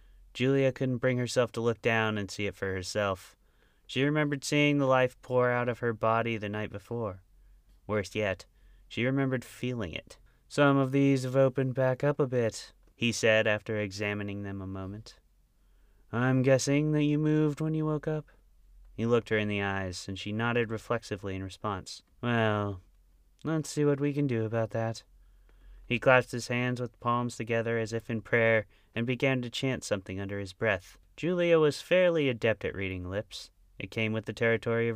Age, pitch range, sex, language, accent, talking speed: 30-49, 100-130 Hz, male, English, American, 185 wpm